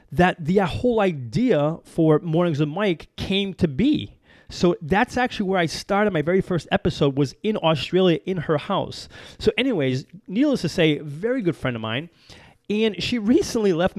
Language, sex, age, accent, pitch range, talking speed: English, male, 30-49, American, 155-210 Hz, 175 wpm